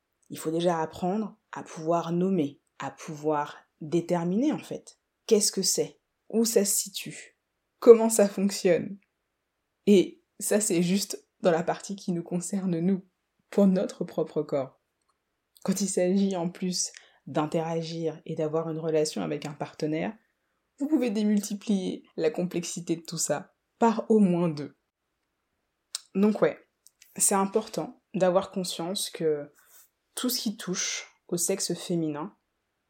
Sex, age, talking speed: female, 20-39, 140 wpm